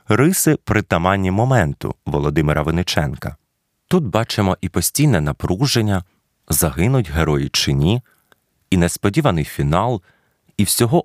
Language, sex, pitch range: Ukrainian, male, 85-120 Hz